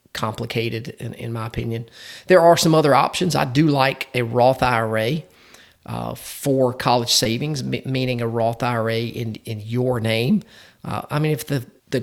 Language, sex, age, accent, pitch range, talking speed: English, male, 40-59, American, 115-135 Hz, 175 wpm